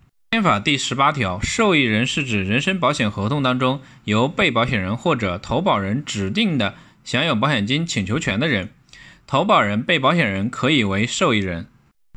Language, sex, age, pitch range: Chinese, male, 20-39, 110-145 Hz